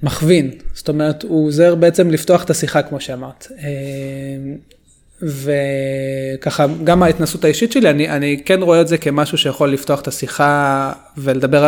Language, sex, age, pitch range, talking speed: Hebrew, male, 20-39, 140-165 Hz, 145 wpm